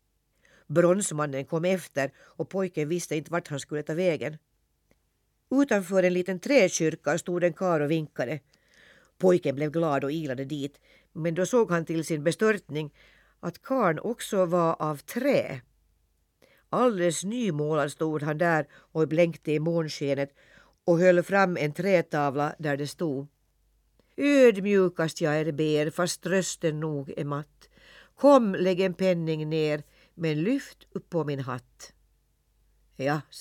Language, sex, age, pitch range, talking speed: Swedish, female, 50-69, 145-180 Hz, 140 wpm